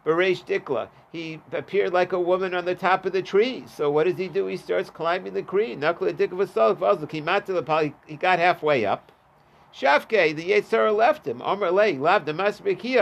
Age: 50-69